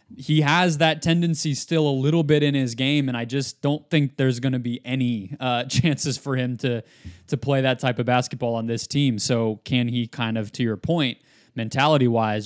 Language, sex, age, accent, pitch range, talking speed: English, male, 20-39, American, 115-140 Hz, 210 wpm